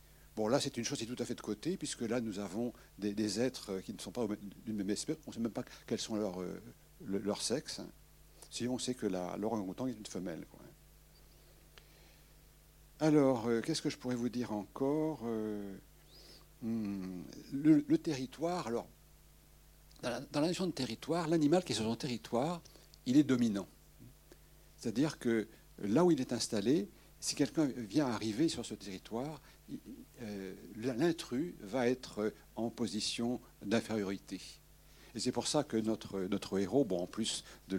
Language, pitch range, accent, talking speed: French, 105-135 Hz, French, 170 wpm